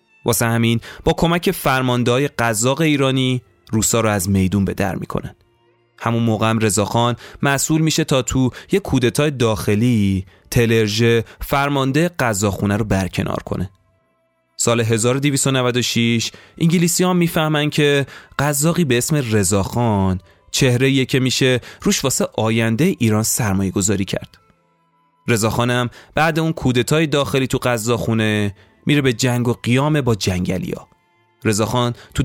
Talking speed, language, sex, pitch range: 120 wpm, Persian, male, 105-140 Hz